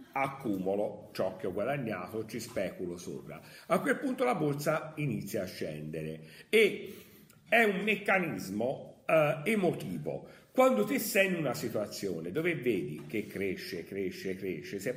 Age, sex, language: 50-69, male, Italian